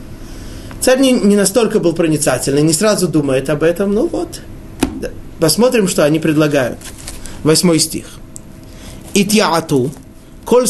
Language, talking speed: Russian, 110 wpm